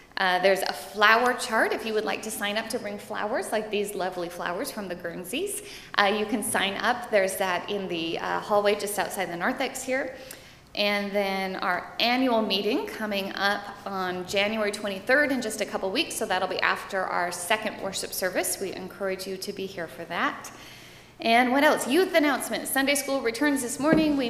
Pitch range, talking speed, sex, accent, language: 195-255 Hz, 200 wpm, female, American, English